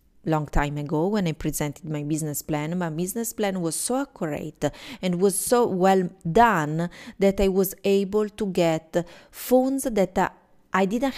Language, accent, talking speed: English, Italian, 165 wpm